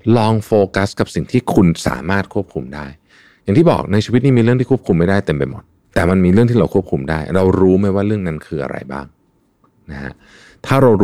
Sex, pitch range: male, 75-105 Hz